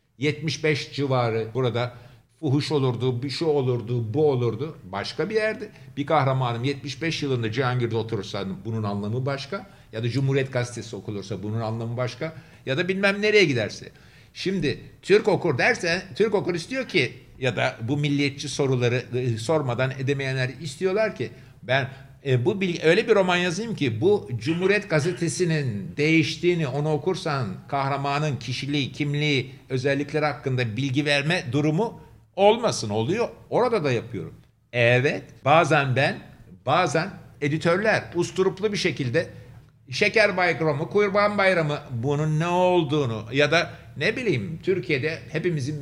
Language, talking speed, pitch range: Turkish, 135 wpm, 125-165 Hz